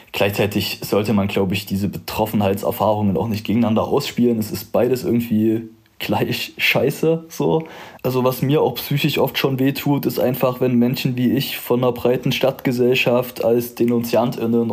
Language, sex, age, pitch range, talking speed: German, male, 20-39, 100-115 Hz, 155 wpm